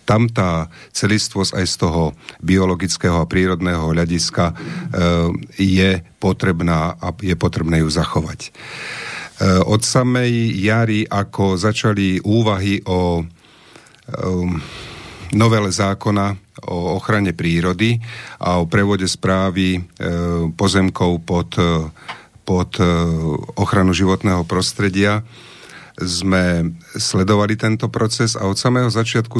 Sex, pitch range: male, 90-110 Hz